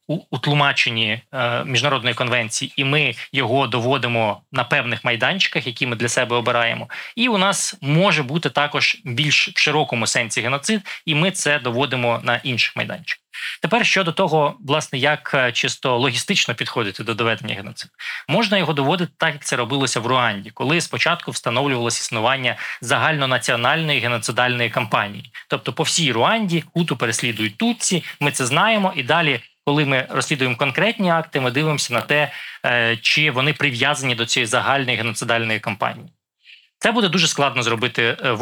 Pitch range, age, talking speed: 120-150 Hz, 20-39, 155 wpm